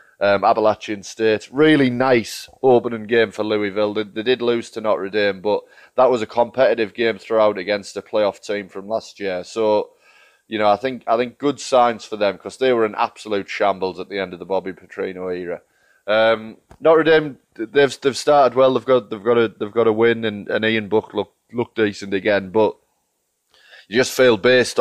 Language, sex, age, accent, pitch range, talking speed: English, male, 20-39, British, 100-120 Hz, 205 wpm